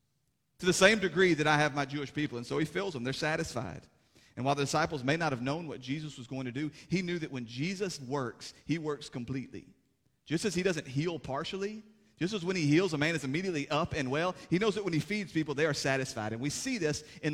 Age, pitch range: 30-49, 135-175 Hz